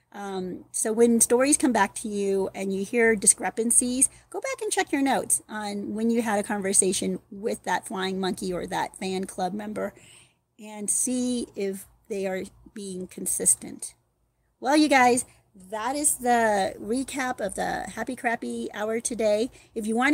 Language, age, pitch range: English, 40-59, 195-255 Hz